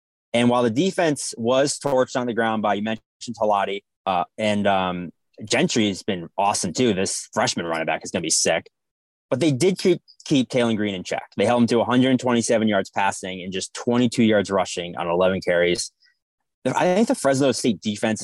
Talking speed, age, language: 190 wpm, 20-39, English